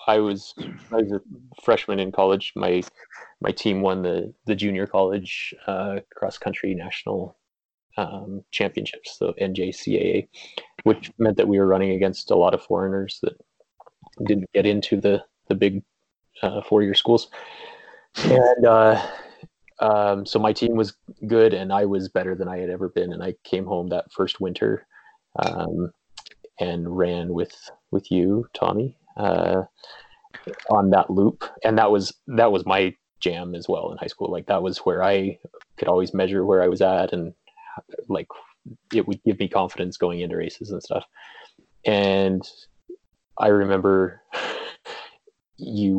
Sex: male